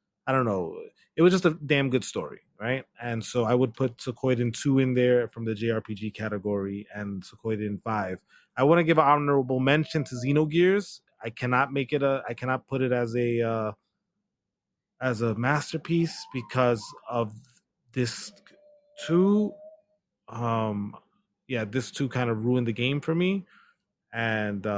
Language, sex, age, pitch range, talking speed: English, male, 20-39, 115-155 Hz, 160 wpm